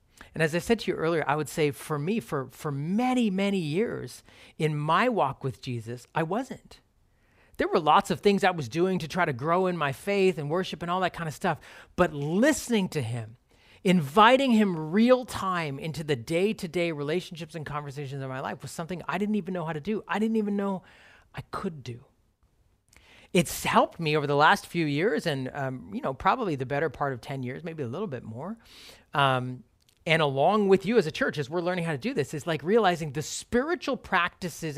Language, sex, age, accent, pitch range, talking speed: English, male, 30-49, American, 140-190 Hz, 215 wpm